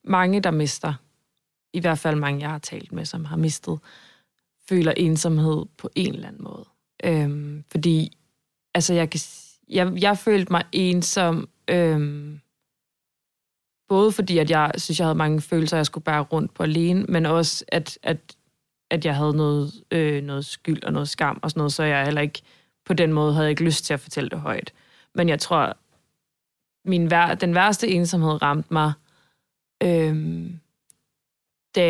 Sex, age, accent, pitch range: female, 20-39, native, 150-175 Hz